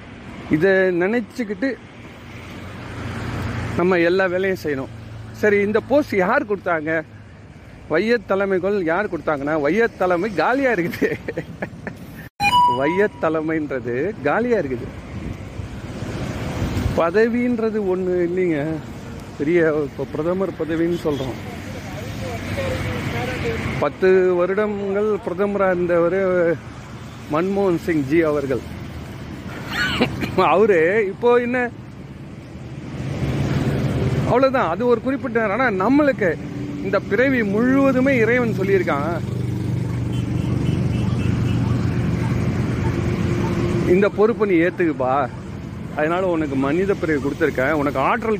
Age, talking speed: 50-69, 75 wpm